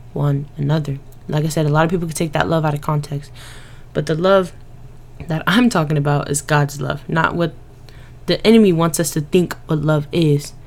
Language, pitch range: English, 140-165 Hz